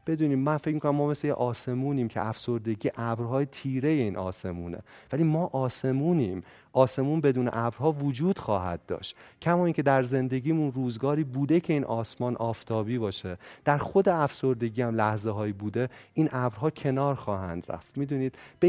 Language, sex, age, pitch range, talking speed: Persian, male, 30-49, 110-145 Hz, 150 wpm